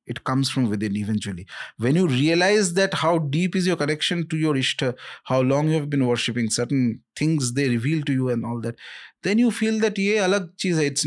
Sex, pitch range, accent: male, 130-190 Hz, Indian